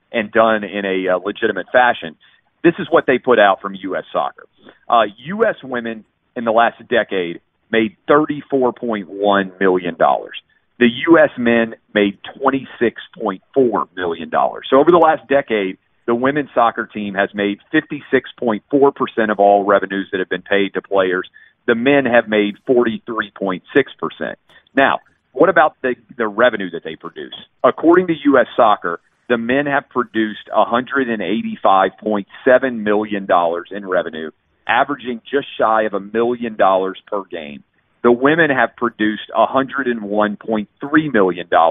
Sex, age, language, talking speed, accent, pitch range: male, 40-59, English, 135 wpm, American, 100-130 Hz